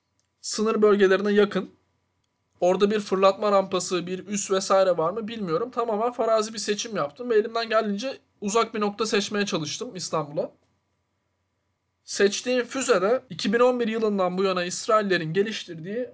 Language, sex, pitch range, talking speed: Turkish, male, 175-225 Hz, 135 wpm